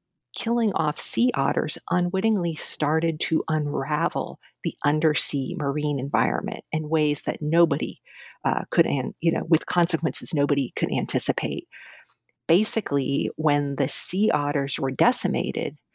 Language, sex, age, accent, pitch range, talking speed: English, female, 50-69, American, 145-185 Hz, 125 wpm